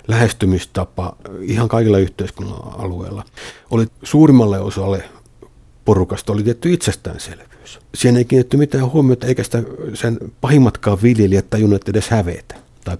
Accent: native